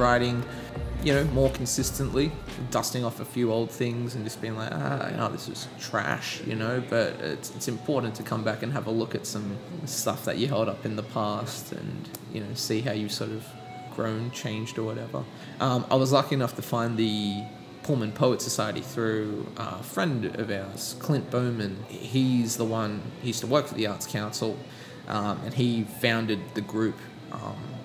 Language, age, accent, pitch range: English, 20-39, Australian, 110-125 Hz